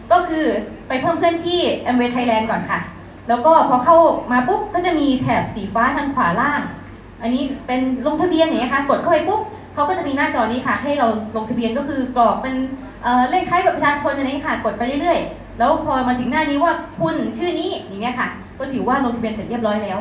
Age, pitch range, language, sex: 20-39, 225-315 Hz, Thai, female